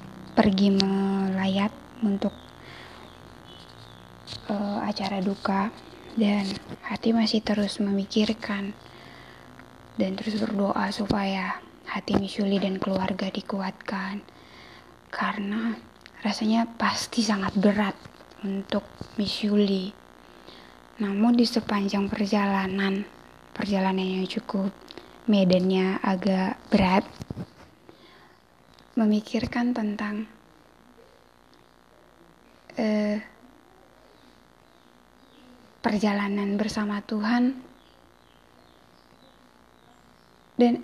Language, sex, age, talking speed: Indonesian, female, 20-39, 65 wpm